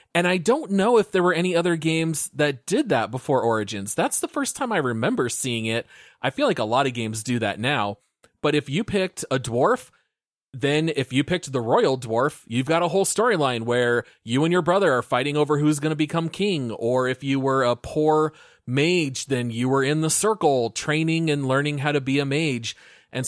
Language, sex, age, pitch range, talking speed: English, male, 30-49, 120-150 Hz, 220 wpm